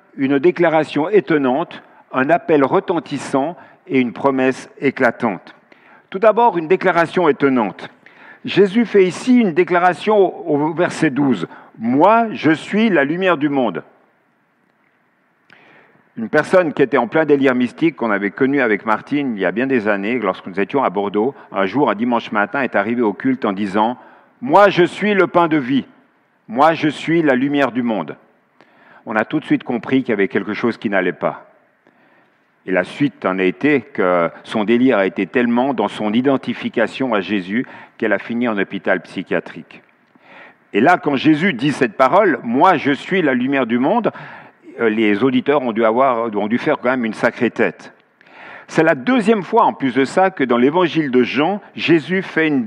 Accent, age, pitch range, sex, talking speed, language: French, 50-69, 125-185 Hz, male, 185 wpm, French